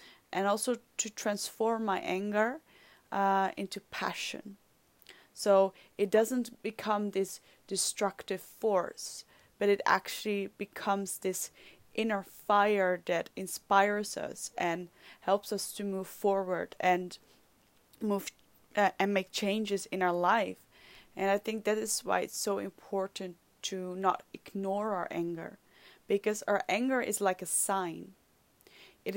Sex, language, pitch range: female, English, 190-215 Hz